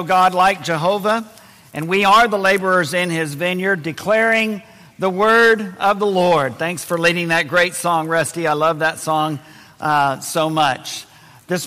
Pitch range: 170-230 Hz